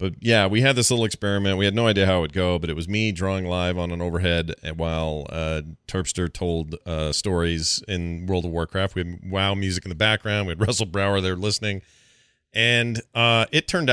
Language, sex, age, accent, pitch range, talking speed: English, male, 40-59, American, 85-115 Hz, 220 wpm